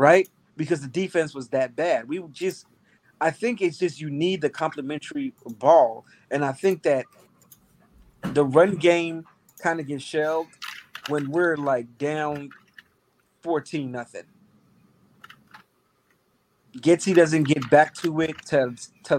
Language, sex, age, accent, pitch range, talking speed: English, male, 30-49, American, 140-180 Hz, 135 wpm